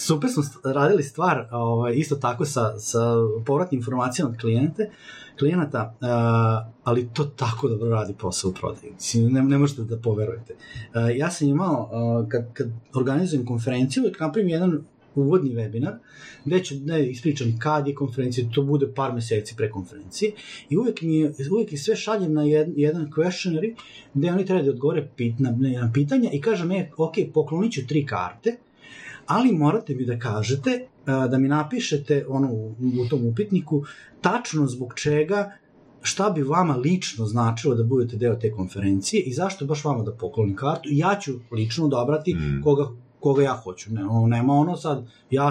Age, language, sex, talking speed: 30-49, Croatian, male, 160 wpm